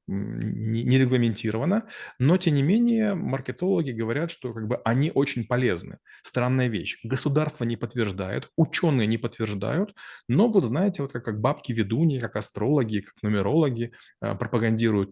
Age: 30-49